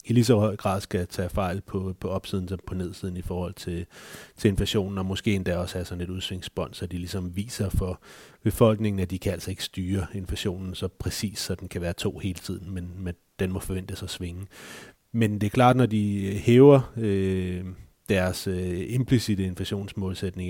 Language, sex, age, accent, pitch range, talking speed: Danish, male, 30-49, native, 95-105 Hz, 200 wpm